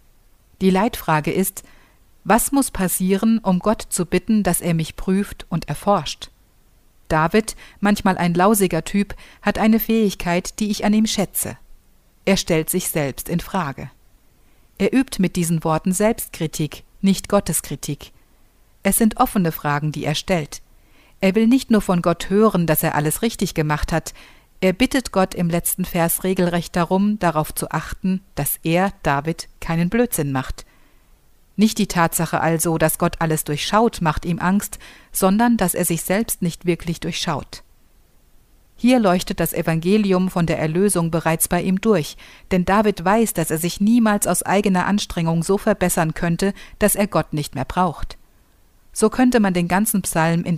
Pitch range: 165-205 Hz